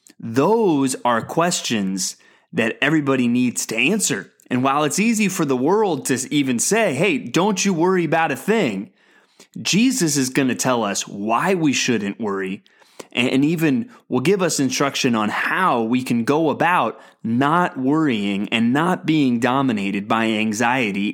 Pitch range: 125-170 Hz